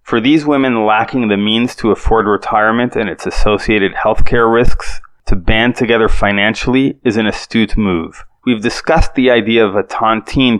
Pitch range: 105-125 Hz